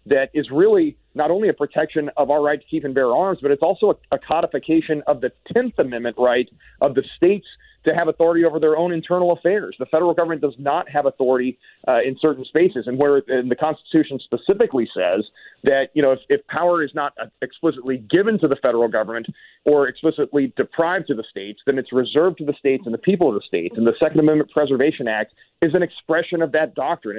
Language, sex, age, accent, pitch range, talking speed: English, male, 40-59, American, 135-160 Hz, 220 wpm